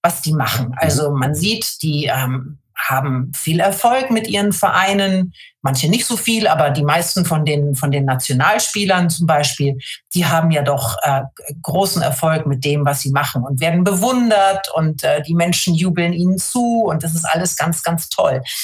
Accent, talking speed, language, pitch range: German, 180 wpm, German, 150-205 Hz